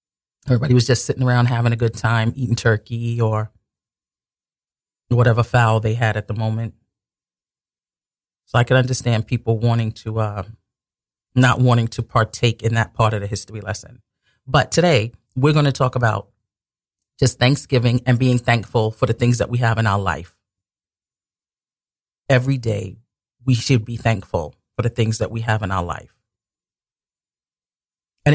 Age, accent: 40-59, American